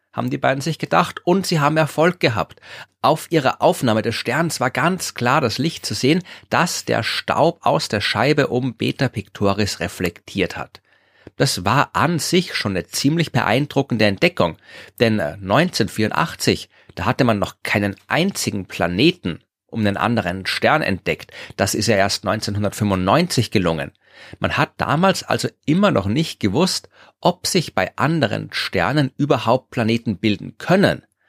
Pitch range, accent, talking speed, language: 100-140 Hz, German, 150 wpm, German